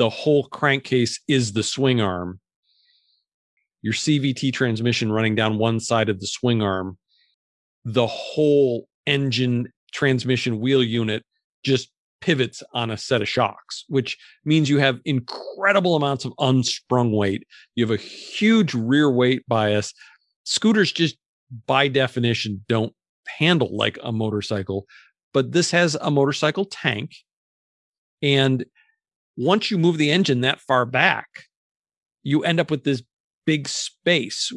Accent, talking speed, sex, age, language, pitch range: American, 135 wpm, male, 40-59, English, 115-150 Hz